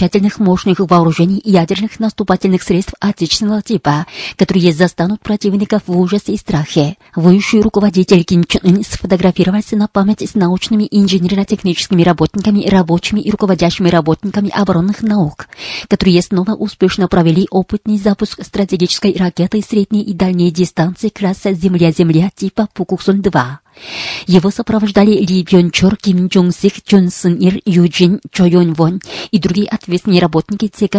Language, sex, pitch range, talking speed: Russian, female, 180-205 Hz, 135 wpm